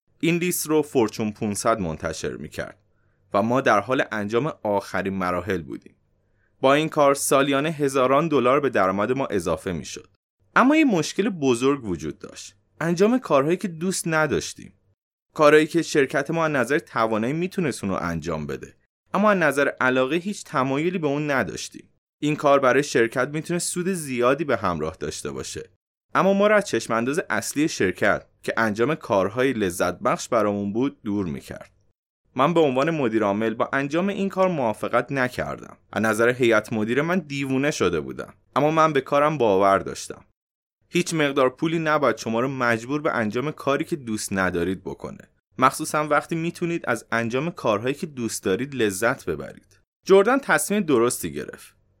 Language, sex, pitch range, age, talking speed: Persian, male, 110-160 Hz, 30-49, 160 wpm